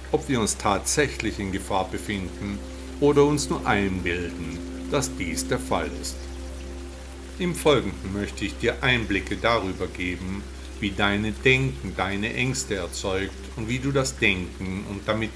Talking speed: 145 wpm